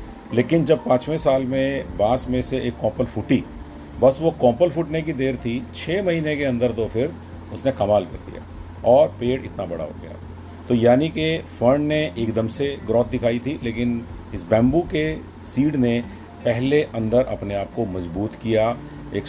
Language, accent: Hindi, native